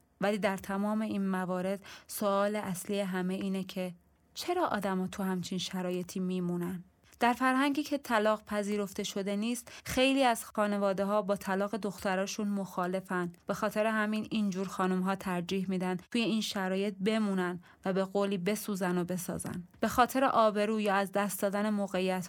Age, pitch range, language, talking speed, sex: 20-39, 185-220 Hz, Persian, 155 wpm, female